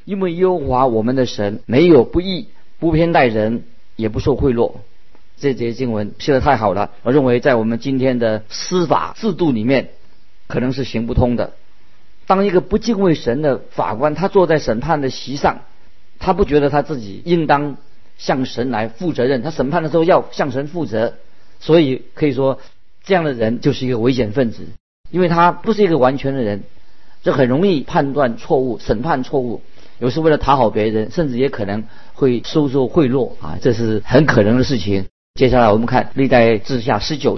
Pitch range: 115-155 Hz